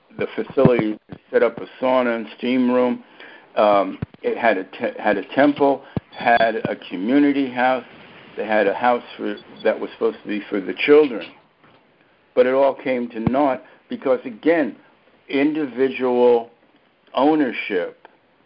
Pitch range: 115-140 Hz